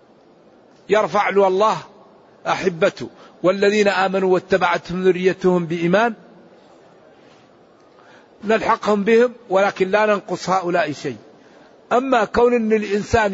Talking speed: 90 wpm